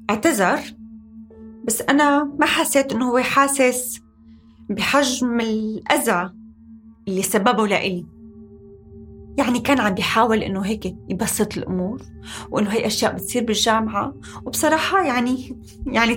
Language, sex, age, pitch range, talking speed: Arabic, female, 20-39, 190-235 Hz, 110 wpm